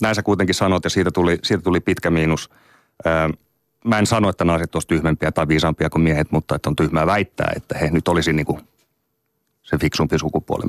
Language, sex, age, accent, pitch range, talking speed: Finnish, male, 30-49, native, 85-105 Hz, 200 wpm